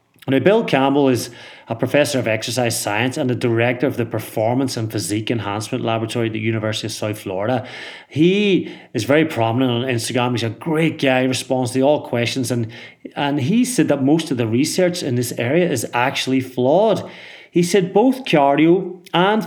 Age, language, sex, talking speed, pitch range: 30-49, English, male, 185 wpm, 120-155 Hz